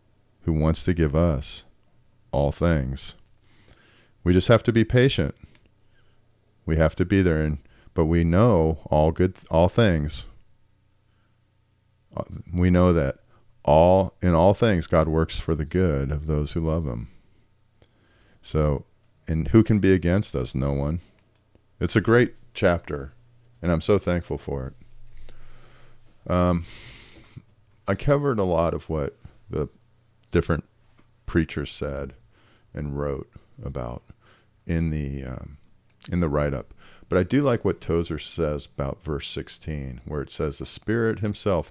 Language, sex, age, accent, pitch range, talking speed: English, male, 40-59, American, 80-110 Hz, 140 wpm